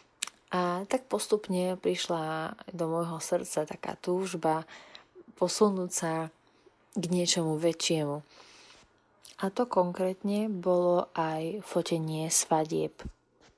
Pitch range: 165-200 Hz